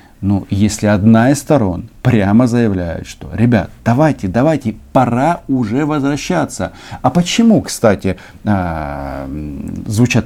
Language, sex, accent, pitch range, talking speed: Russian, male, native, 90-120 Hz, 105 wpm